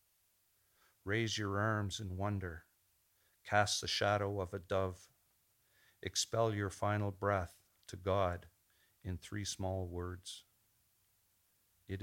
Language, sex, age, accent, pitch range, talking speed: English, male, 50-69, American, 95-110 Hz, 110 wpm